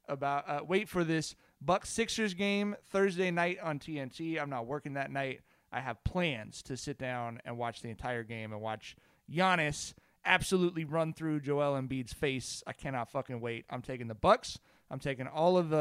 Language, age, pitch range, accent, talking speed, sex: English, 30-49, 130-170 Hz, American, 190 wpm, male